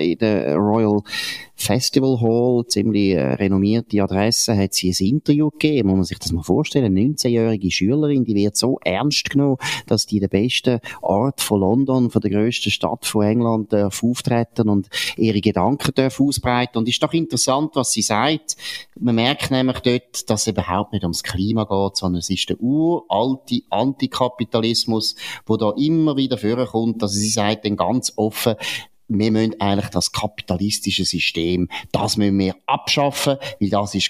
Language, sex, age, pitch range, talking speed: German, male, 30-49, 105-125 Hz, 170 wpm